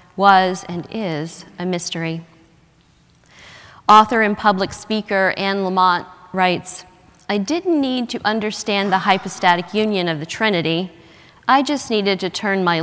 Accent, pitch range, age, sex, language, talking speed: American, 170-195 Hz, 40-59, female, English, 135 wpm